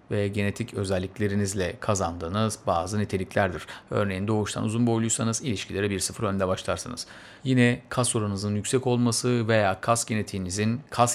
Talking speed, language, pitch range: 130 wpm, Turkish, 100-120 Hz